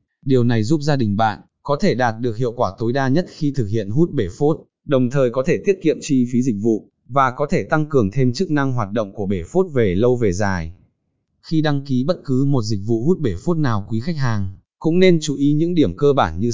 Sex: male